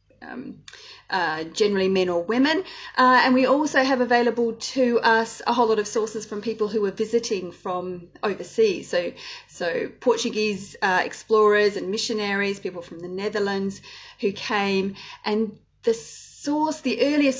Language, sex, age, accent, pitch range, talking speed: Indonesian, female, 30-49, Australian, 185-240 Hz, 150 wpm